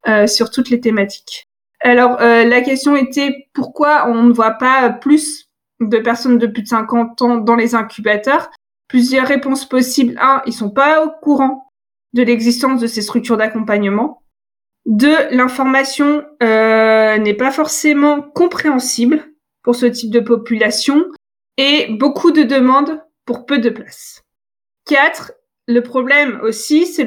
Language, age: French, 20-39